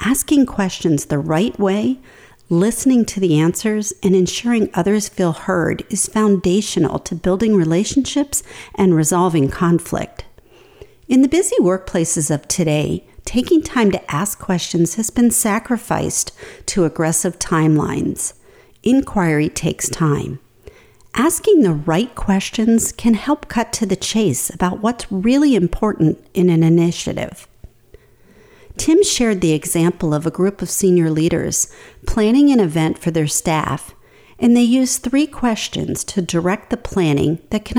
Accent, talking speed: American, 135 wpm